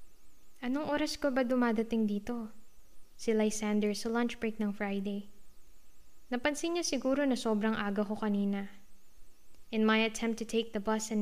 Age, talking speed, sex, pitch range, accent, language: 20-39, 155 wpm, female, 215-255 Hz, Filipino, English